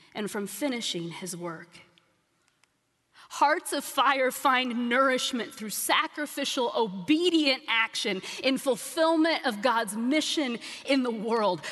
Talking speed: 115 wpm